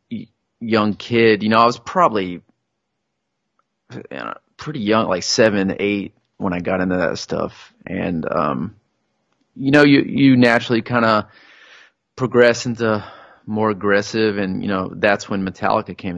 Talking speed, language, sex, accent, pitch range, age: 140 wpm, English, male, American, 95-110 Hz, 30-49